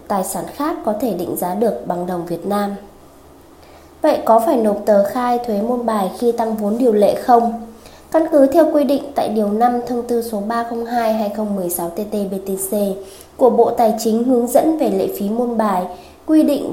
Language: Vietnamese